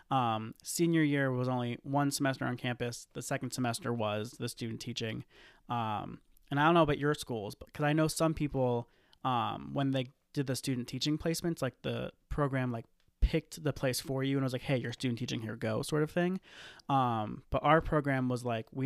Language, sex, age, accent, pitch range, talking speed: English, male, 20-39, American, 120-150 Hz, 210 wpm